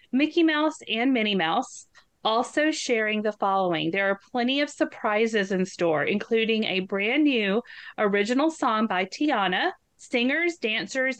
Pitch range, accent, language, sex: 205-255 Hz, American, English, female